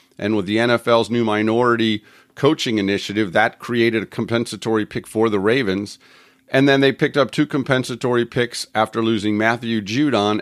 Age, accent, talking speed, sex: 50-69, American, 160 wpm, male